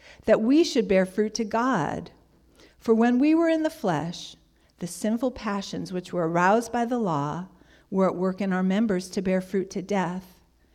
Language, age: English, 50-69